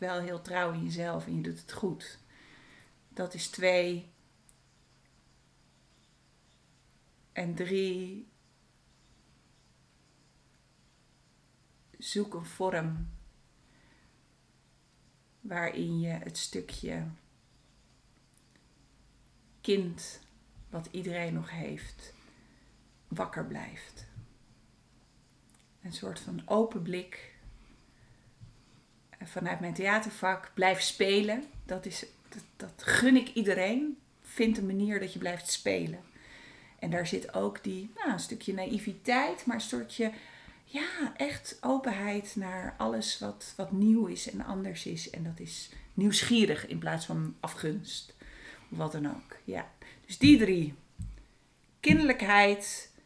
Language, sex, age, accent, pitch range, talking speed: Dutch, female, 40-59, Dutch, 135-205 Hz, 105 wpm